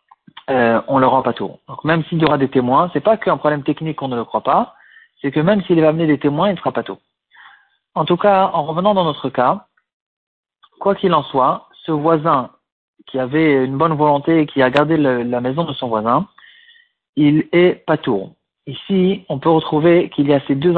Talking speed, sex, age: 230 wpm, male, 40-59